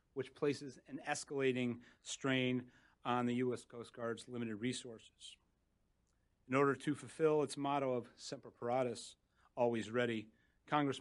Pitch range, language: 125-150 Hz, English